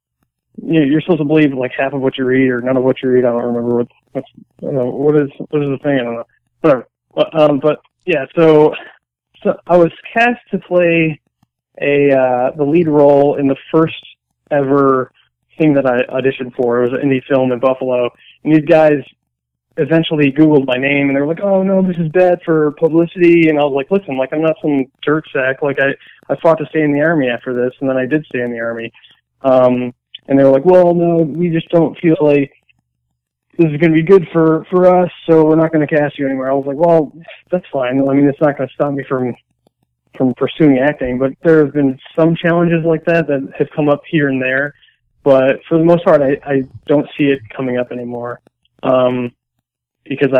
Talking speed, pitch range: 225 wpm, 130-155 Hz